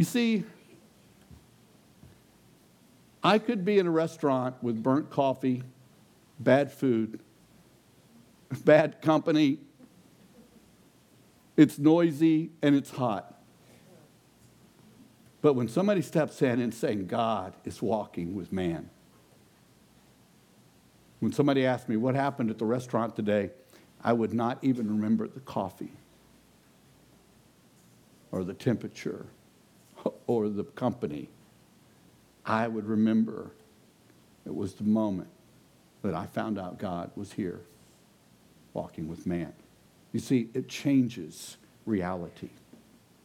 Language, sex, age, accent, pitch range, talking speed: English, male, 60-79, American, 110-150 Hz, 105 wpm